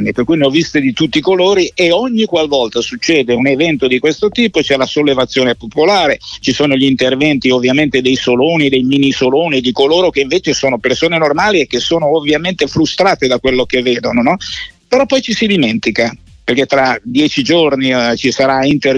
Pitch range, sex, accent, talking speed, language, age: 130-180 Hz, male, native, 195 wpm, Italian, 50-69